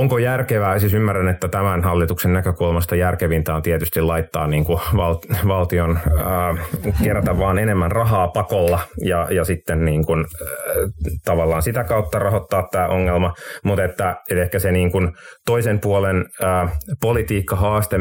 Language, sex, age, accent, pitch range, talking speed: Finnish, male, 30-49, native, 85-100 Hz, 145 wpm